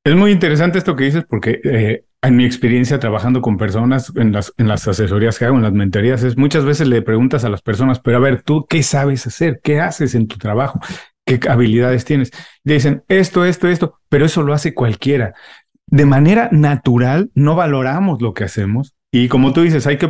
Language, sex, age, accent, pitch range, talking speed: Spanish, male, 40-59, Mexican, 125-155 Hz, 210 wpm